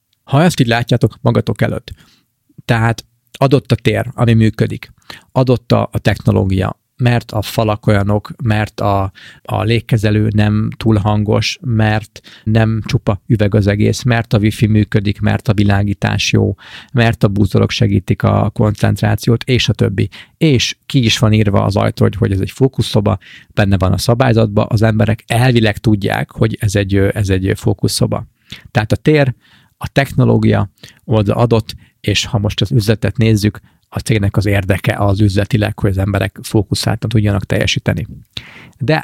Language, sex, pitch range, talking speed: Hungarian, male, 105-125 Hz, 150 wpm